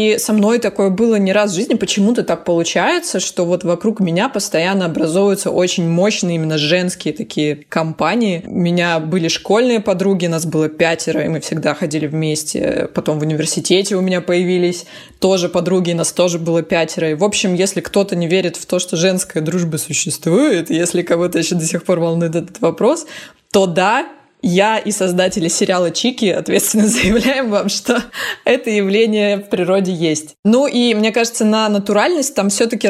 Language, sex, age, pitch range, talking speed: Russian, female, 20-39, 170-205 Hz, 175 wpm